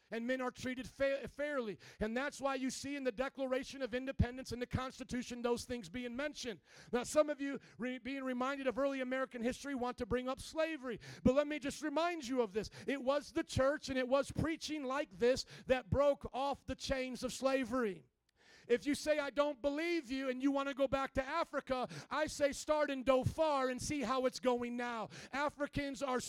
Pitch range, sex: 240-275 Hz, male